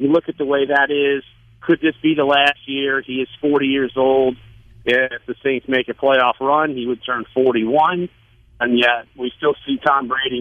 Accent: American